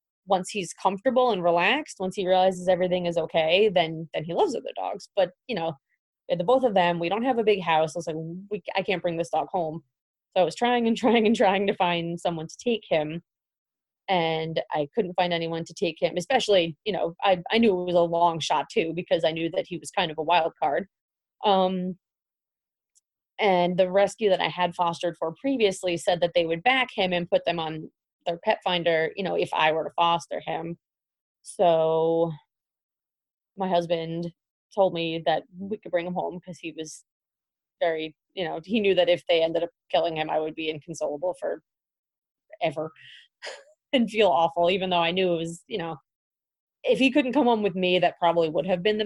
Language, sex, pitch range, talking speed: English, female, 165-200 Hz, 210 wpm